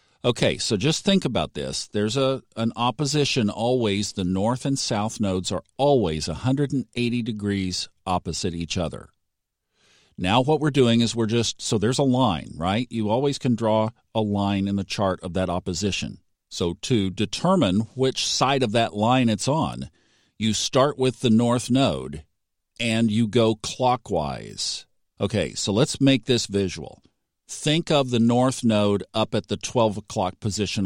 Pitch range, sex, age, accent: 100-125 Hz, male, 50-69, American